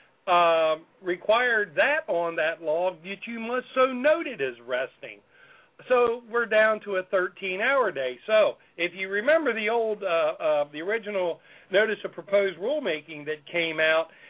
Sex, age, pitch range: male, 50-69, 170-230 Hz